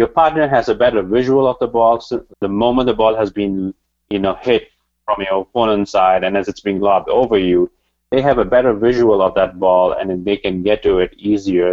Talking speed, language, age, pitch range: 225 wpm, English, 30-49, 95-120 Hz